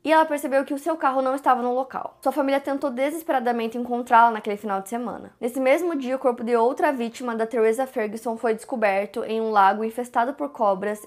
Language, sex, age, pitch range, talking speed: Portuguese, female, 20-39, 215-255 Hz, 210 wpm